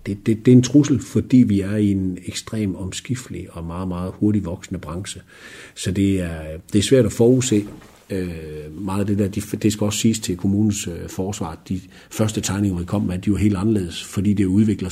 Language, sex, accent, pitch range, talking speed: Danish, male, native, 90-110 Hz, 210 wpm